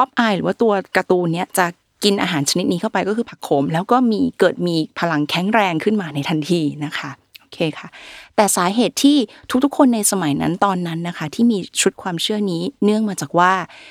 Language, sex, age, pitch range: Thai, female, 20-39, 165-215 Hz